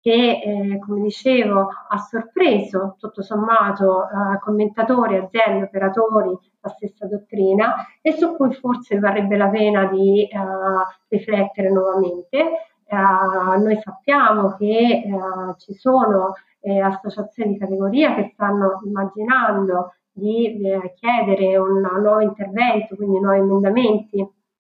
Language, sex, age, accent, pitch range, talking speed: Italian, female, 30-49, native, 195-220 Hz, 120 wpm